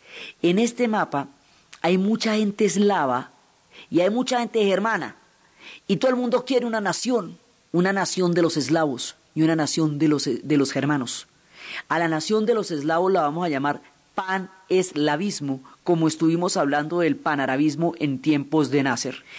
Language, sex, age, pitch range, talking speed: Spanish, female, 40-59, 155-205 Hz, 165 wpm